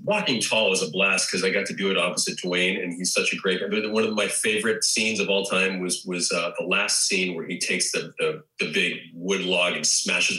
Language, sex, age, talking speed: English, male, 40-59, 260 wpm